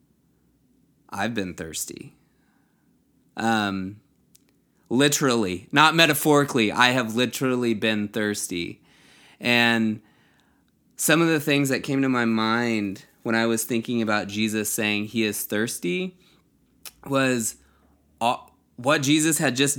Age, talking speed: 20-39, 110 wpm